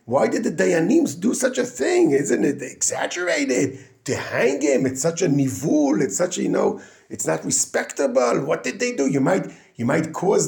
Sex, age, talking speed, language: male, 50-69, 200 wpm, English